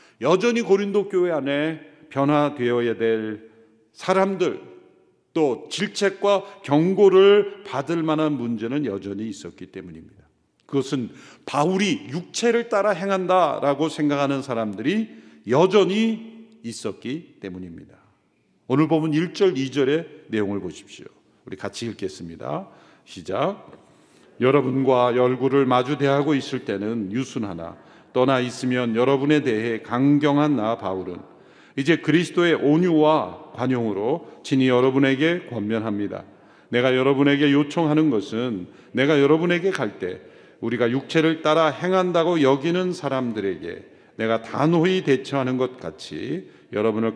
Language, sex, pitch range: Korean, male, 115-165 Hz